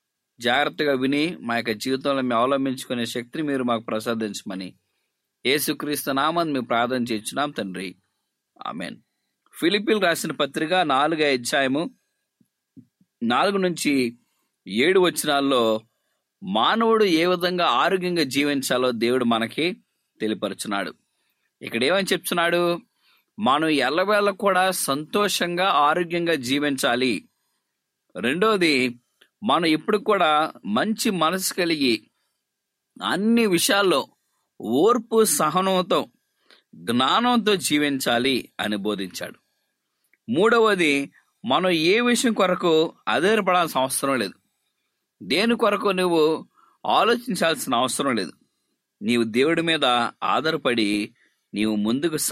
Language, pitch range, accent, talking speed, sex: English, 125-190 Hz, Indian, 70 wpm, male